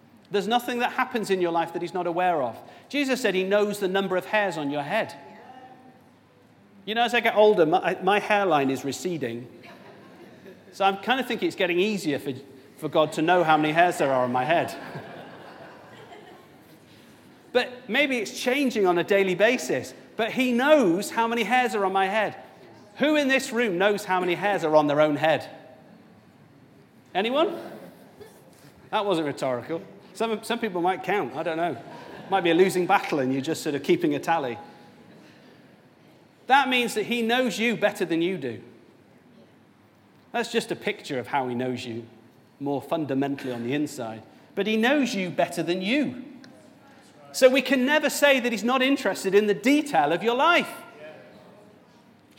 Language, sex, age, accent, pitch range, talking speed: English, male, 40-59, British, 165-240 Hz, 180 wpm